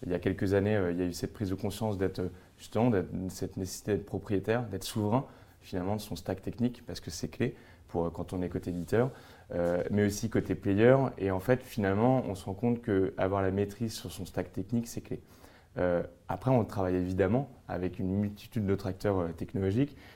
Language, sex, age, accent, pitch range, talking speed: French, male, 30-49, French, 95-110 Hz, 210 wpm